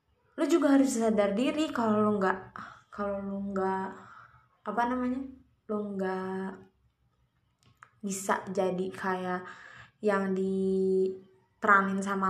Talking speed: 100 wpm